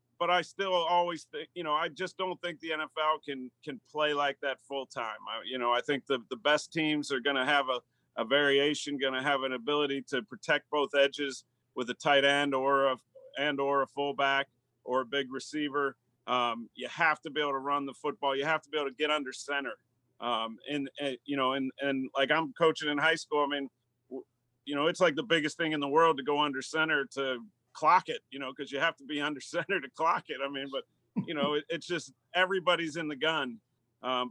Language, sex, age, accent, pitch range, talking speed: English, male, 40-59, American, 130-150 Hz, 235 wpm